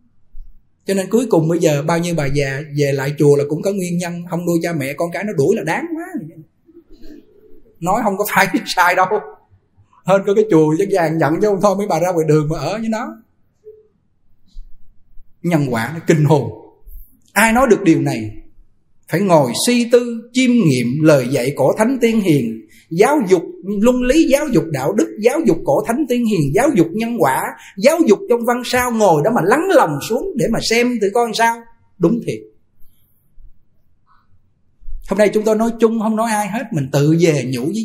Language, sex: Vietnamese, male